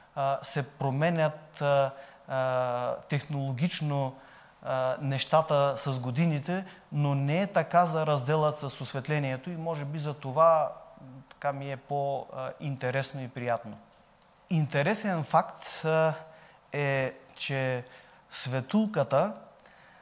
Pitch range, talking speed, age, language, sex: 135-165 Hz, 90 wpm, 30-49, Bulgarian, male